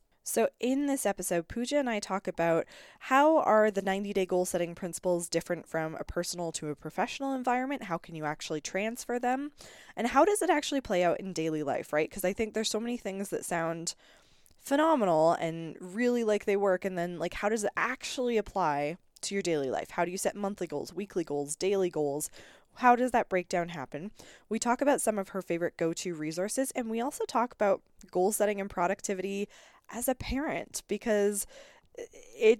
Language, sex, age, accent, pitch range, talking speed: English, female, 10-29, American, 170-230 Hz, 200 wpm